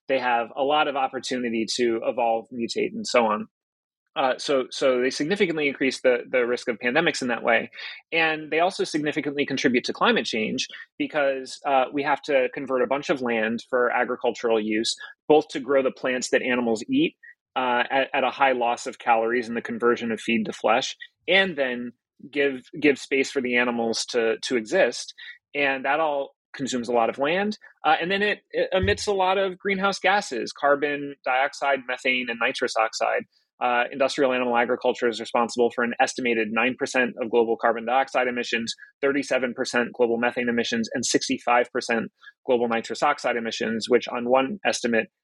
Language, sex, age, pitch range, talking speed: English, male, 30-49, 120-150 Hz, 180 wpm